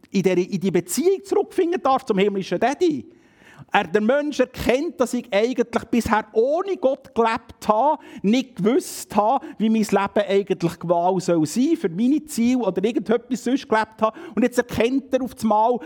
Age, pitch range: 50-69, 175-255 Hz